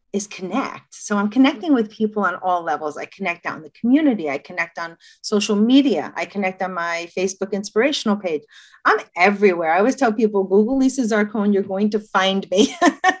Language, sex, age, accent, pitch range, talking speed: English, female, 40-59, American, 175-220 Hz, 185 wpm